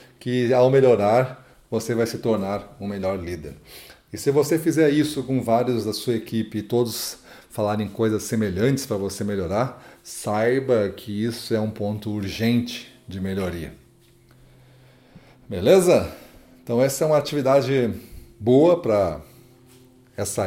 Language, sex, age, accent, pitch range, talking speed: Portuguese, male, 40-59, Brazilian, 105-130 Hz, 140 wpm